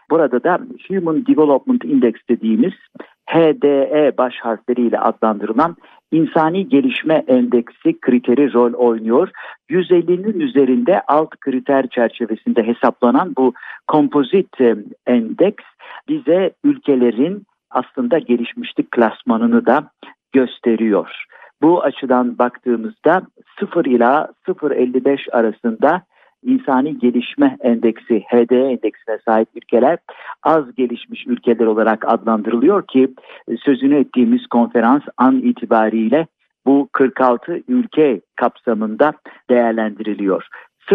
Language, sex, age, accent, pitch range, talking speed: Turkish, male, 50-69, native, 120-165 Hz, 90 wpm